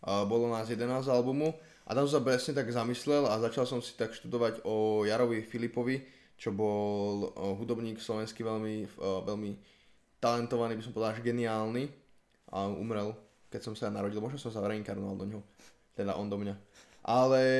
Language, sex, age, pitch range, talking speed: Slovak, male, 10-29, 105-130 Hz, 170 wpm